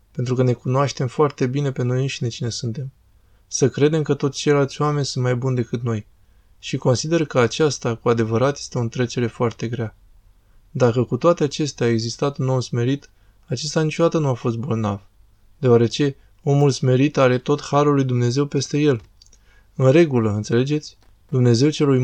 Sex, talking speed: male, 170 wpm